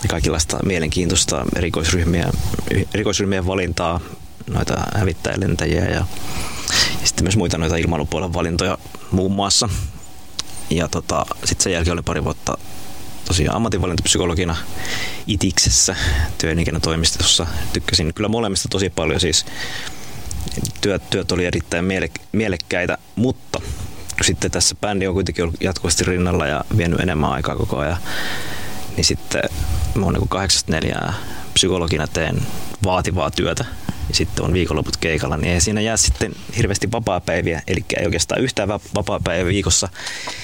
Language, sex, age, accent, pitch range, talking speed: Finnish, male, 20-39, native, 85-100 Hz, 130 wpm